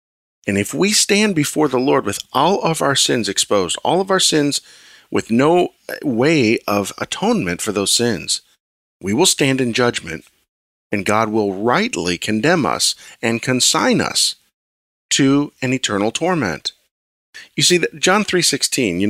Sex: male